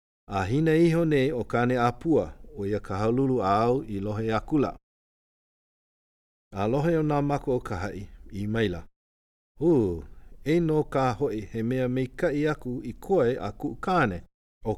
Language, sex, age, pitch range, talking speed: English, male, 50-69, 90-130 Hz, 140 wpm